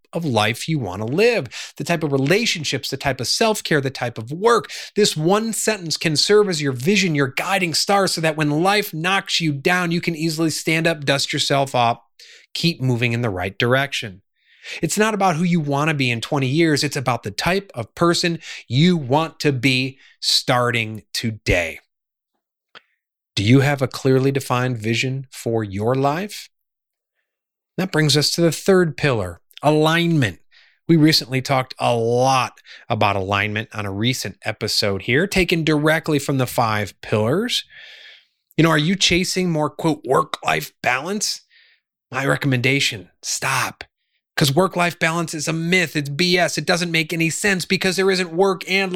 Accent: American